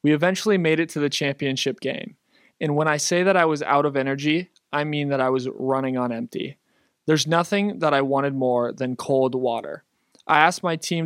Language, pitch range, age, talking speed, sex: English, 135-160 Hz, 20-39, 210 wpm, male